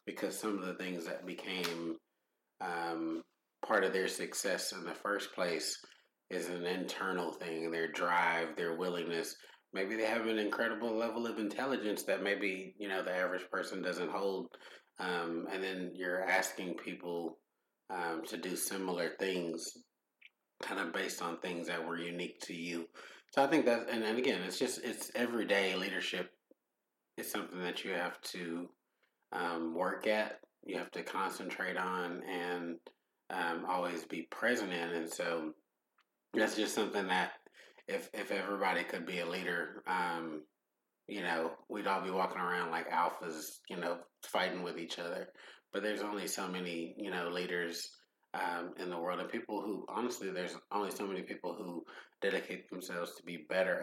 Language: English